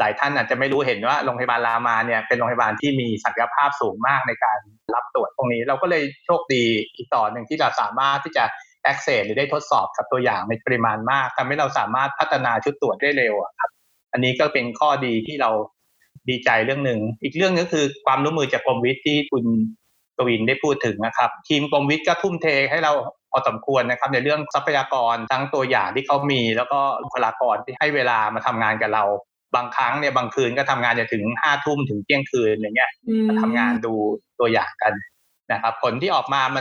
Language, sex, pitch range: Thai, male, 120-150 Hz